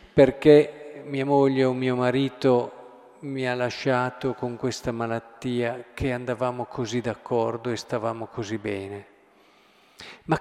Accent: native